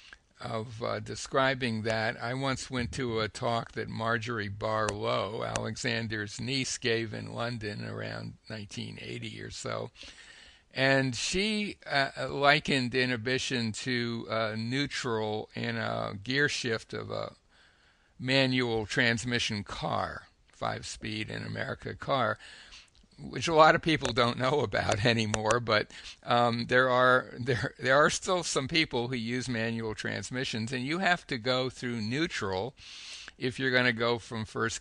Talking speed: 140 wpm